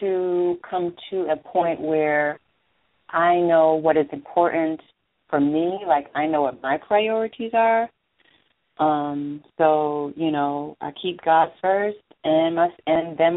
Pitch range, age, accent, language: 145-170 Hz, 30-49, American, English